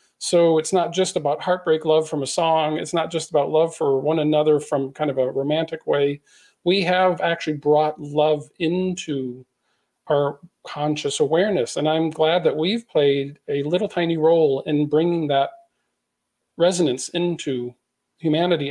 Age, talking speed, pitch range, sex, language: 40-59, 155 wpm, 145-175 Hz, male, English